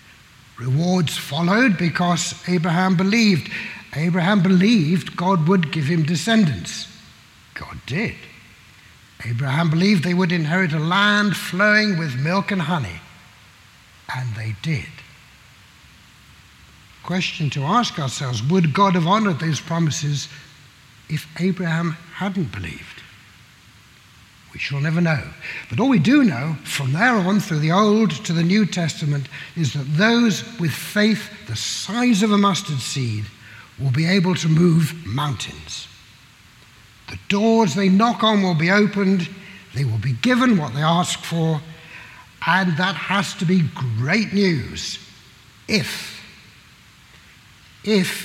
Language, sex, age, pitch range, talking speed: English, male, 60-79, 130-190 Hz, 130 wpm